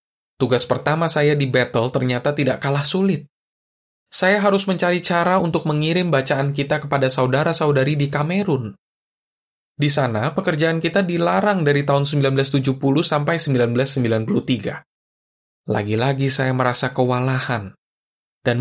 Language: Indonesian